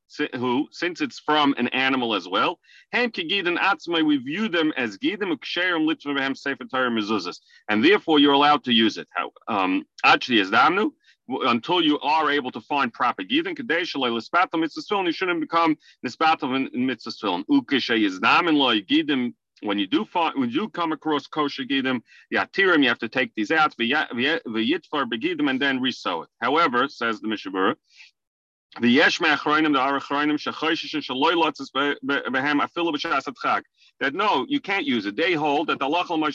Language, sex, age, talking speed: English, male, 40-59, 170 wpm